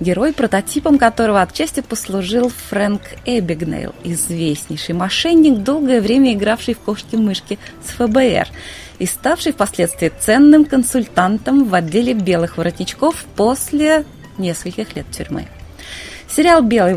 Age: 20-39